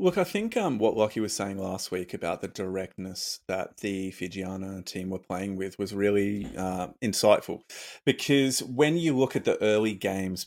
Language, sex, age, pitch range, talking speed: English, male, 20-39, 95-115 Hz, 185 wpm